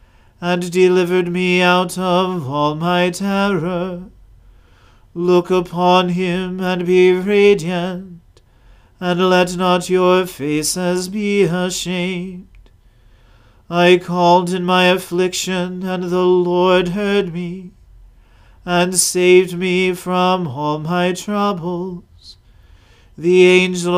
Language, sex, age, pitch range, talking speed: English, male, 40-59, 175-185 Hz, 100 wpm